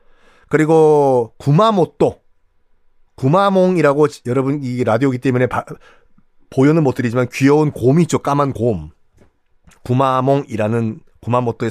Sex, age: male, 40-59